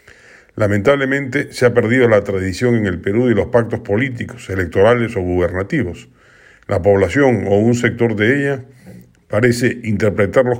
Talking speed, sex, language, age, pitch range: 140 wpm, male, Spanish, 50-69, 100-125 Hz